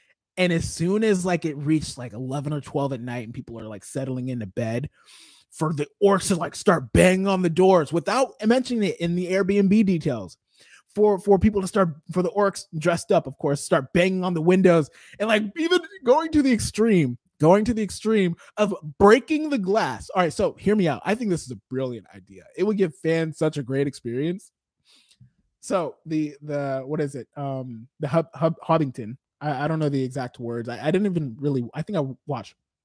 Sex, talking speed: male, 210 wpm